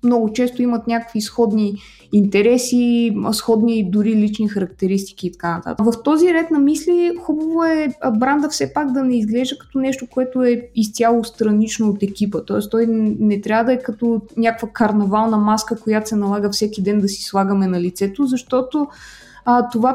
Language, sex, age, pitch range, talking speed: Bulgarian, female, 20-39, 210-255 Hz, 165 wpm